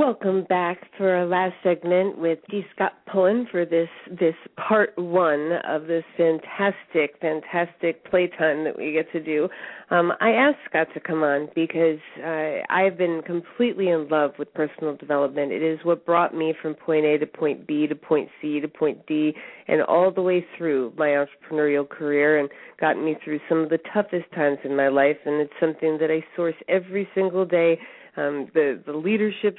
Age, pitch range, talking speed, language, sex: 40-59, 150-180 Hz, 185 wpm, English, female